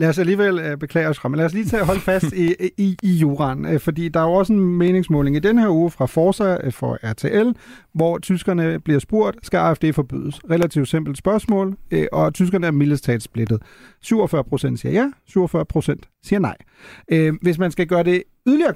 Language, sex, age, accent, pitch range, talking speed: Danish, male, 30-49, native, 145-195 Hz, 180 wpm